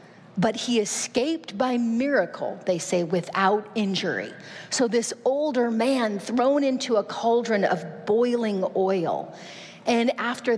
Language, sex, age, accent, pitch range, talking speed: English, female, 40-59, American, 195-240 Hz, 125 wpm